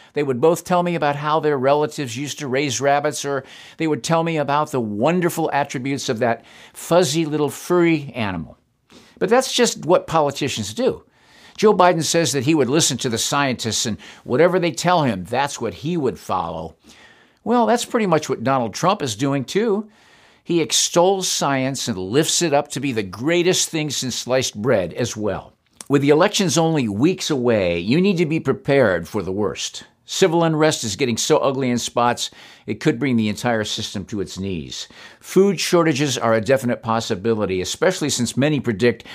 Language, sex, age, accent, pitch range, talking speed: English, male, 50-69, American, 115-160 Hz, 185 wpm